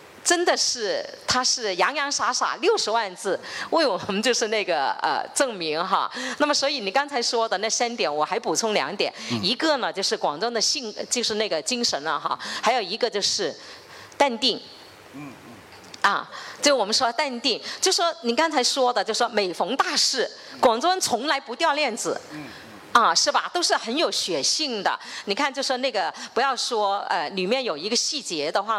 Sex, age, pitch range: female, 40-59, 210-285 Hz